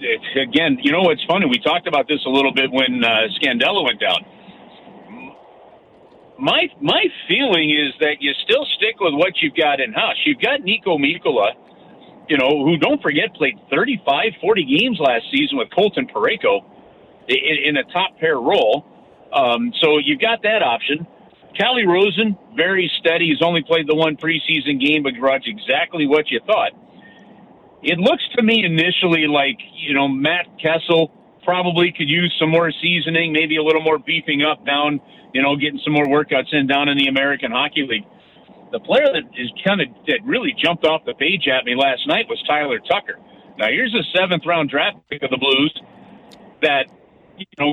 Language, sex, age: English, male, 50-69